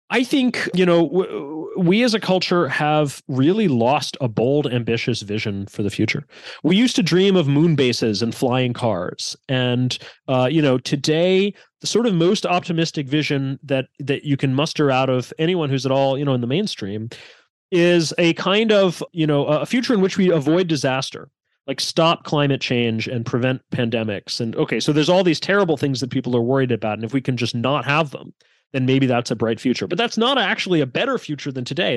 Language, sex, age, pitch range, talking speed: English, male, 30-49, 130-175 Hz, 210 wpm